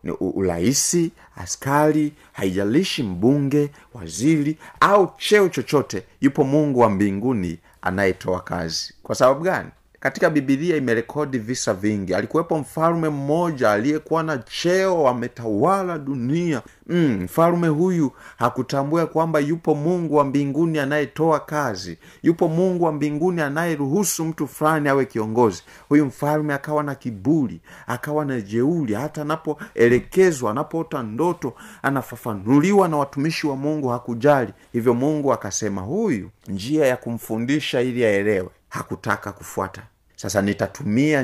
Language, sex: Swahili, male